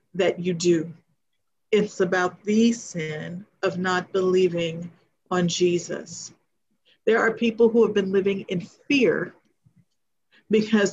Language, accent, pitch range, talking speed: English, American, 175-200 Hz, 120 wpm